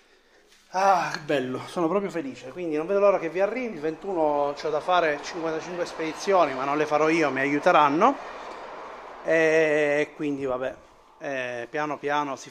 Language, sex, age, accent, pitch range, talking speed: Italian, male, 30-49, native, 150-185 Hz, 165 wpm